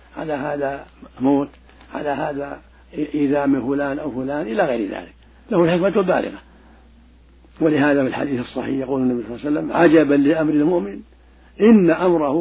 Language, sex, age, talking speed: Arabic, male, 60-79, 150 wpm